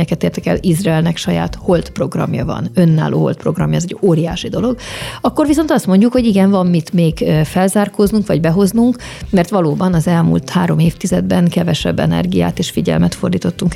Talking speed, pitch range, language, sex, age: 160 wpm, 160-195 Hz, Hungarian, female, 30-49